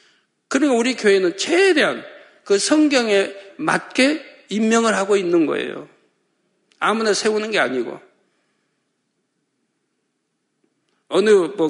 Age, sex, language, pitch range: 50-69, male, Korean, 190-290 Hz